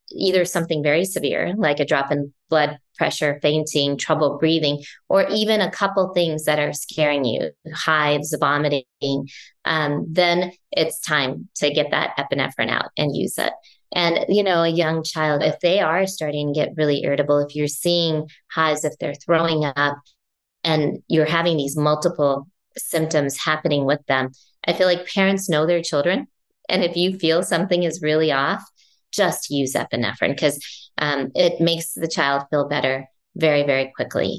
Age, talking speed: 20-39, 165 wpm